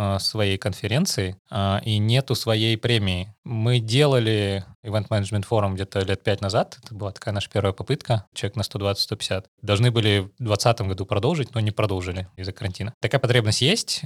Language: Russian